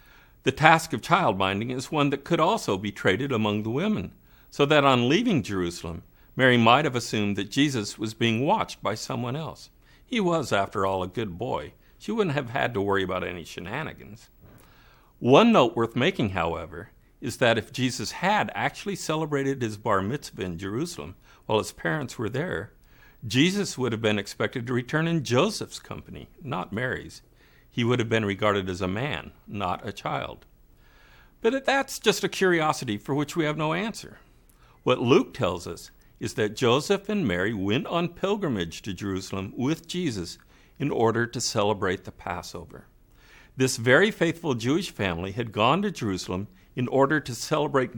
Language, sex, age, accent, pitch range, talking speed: English, male, 50-69, American, 100-155 Hz, 175 wpm